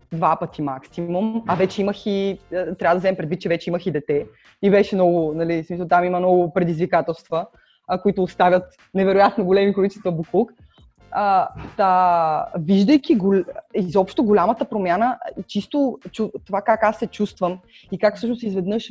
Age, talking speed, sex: 20-39, 150 wpm, female